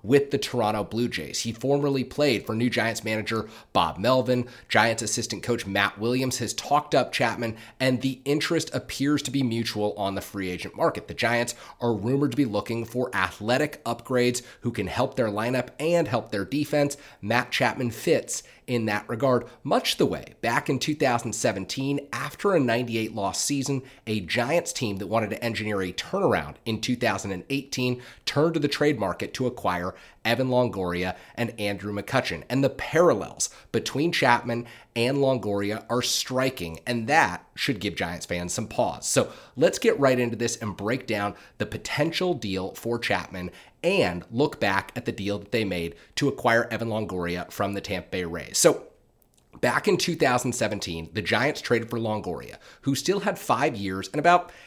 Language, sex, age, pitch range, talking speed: English, male, 30-49, 105-135 Hz, 175 wpm